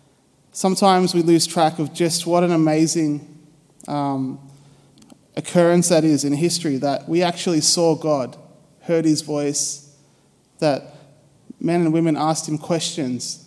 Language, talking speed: English, 135 wpm